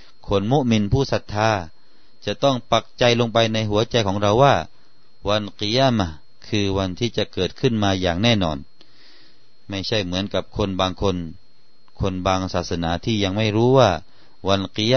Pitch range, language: 95-120 Hz, Thai